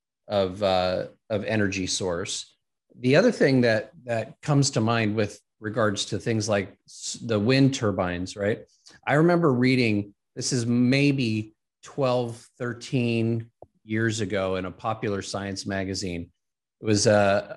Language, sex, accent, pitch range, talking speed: English, male, American, 100-115 Hz, 140 wpm